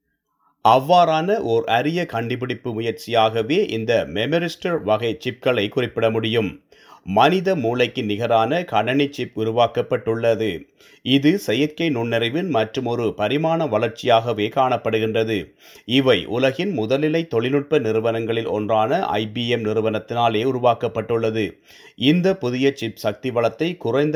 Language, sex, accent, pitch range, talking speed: Tamil, male, native, 110-135 Hz, 100 wpm